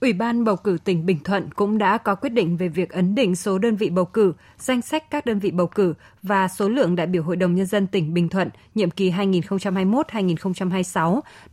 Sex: female